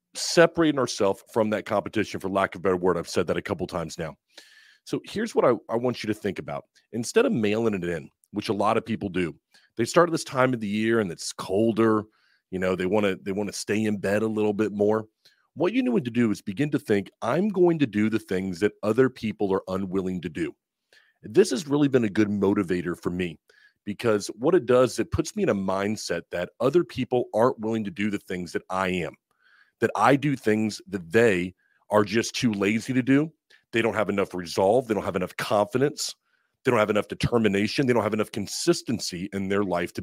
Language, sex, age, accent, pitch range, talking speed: English, male, 40-59, American, 100-125 Hz, 230 wpm